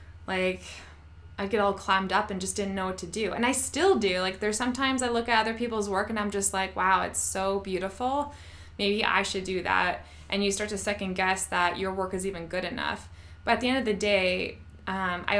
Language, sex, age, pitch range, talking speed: English, female, 20-39, 175-210 Hz, 240 wpm